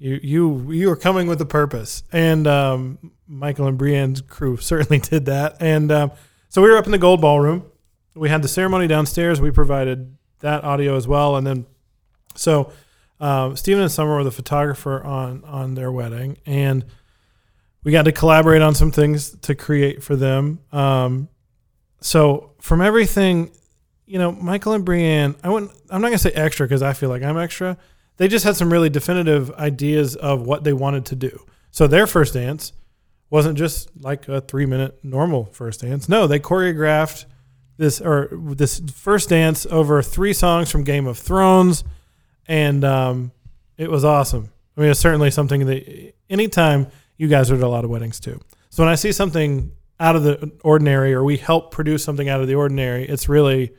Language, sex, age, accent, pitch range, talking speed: English, male, 20-39, American, 135-160 Hz, 185 wpm